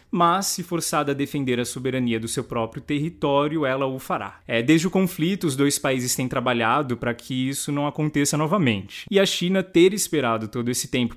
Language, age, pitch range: Portuguese, 20-39, 120-155 Hz